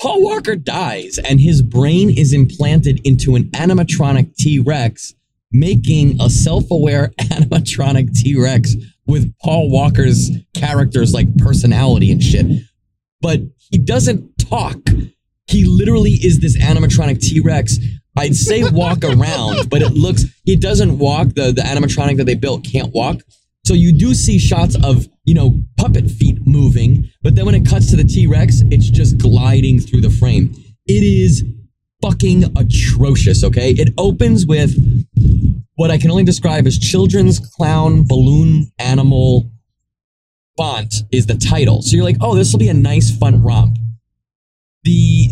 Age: 20-39